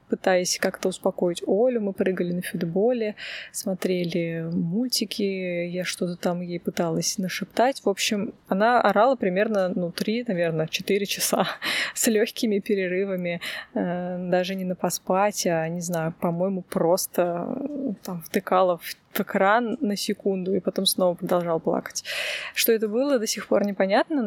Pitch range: 185-220 Hz